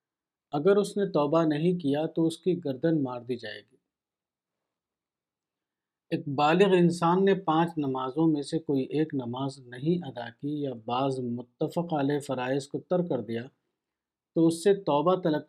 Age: 50-69